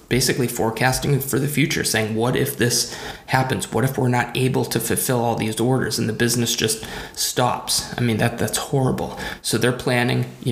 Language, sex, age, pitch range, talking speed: English, male, 20-39, 115-135 Hz, 195 wpm